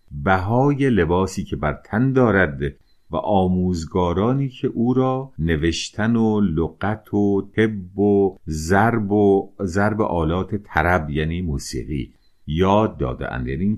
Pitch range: 80-115 Hz